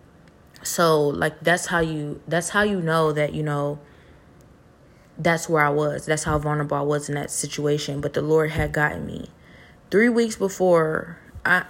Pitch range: 150-170 Hz